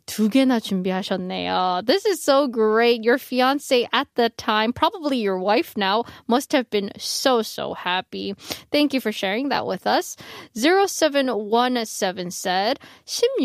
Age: 20-39